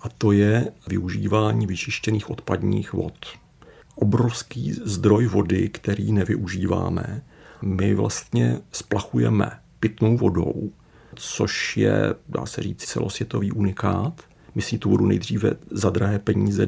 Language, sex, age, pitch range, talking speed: Czech, male, 40-59, 95-115 Hz, 115 wpm